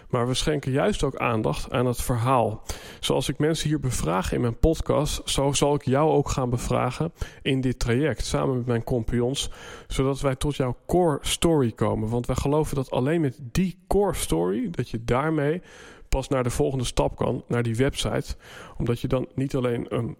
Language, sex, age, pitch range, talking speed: Dutch, male, 40-59, 120-155 Hz, 195 wpm